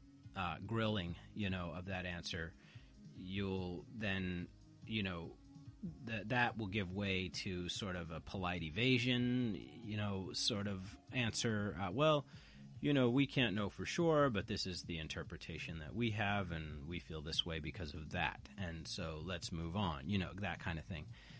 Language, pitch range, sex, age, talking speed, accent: English, 85-115 Hz, male, 30-49, 175 wpm, American